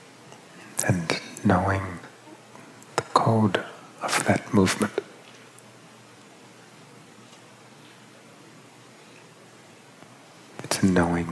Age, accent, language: 50-69, American, English